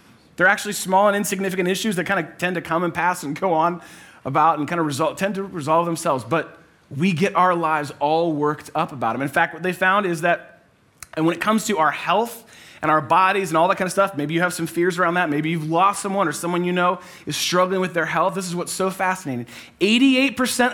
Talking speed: 240 wpm